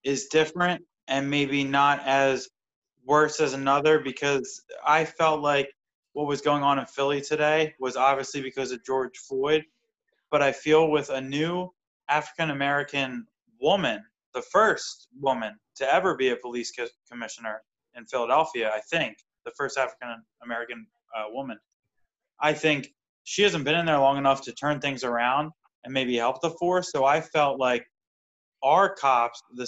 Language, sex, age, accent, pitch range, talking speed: English, male, 20-39, American, 125-150 Hz, 160 wpm